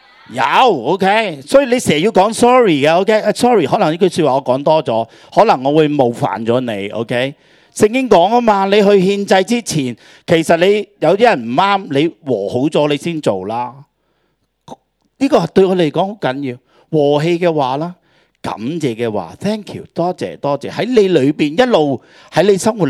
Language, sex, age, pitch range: Chinese, male, 40-59, 135-200 Hz